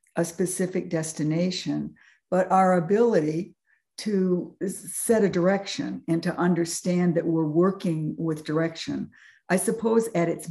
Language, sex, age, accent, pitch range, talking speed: English, female, 60-79, American, 160-190 Hz, 125 wpm